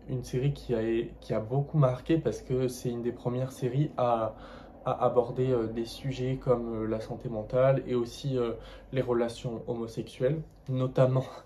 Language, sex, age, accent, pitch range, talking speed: French, male, 20-39, French, 115-135 Hz, 155 wpm